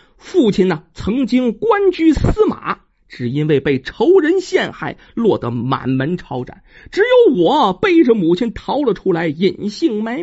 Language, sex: Chinese, male